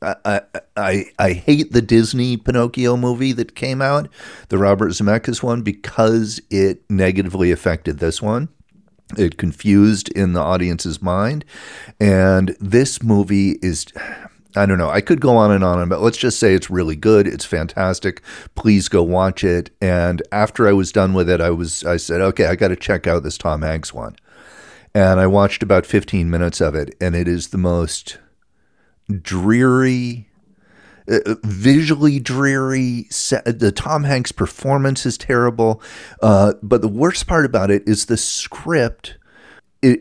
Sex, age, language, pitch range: male, 40-59, English, 90-115 Hz